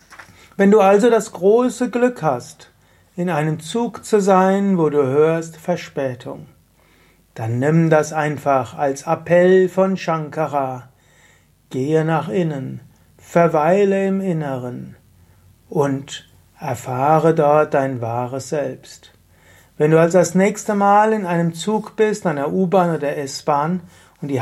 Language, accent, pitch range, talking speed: German, German, 140-175 Hz, 135 wpm